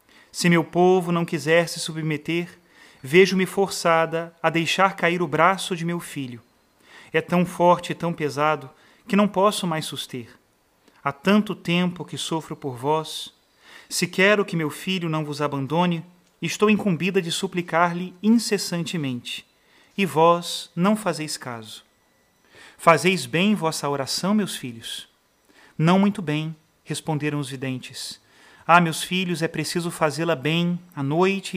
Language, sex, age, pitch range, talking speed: Portuguese, male, 40-59, 155-185 Hz, 140 wpm